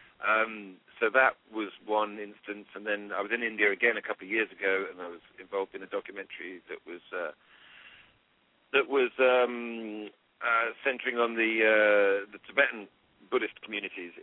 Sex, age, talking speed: male, 50-69, 170 wpm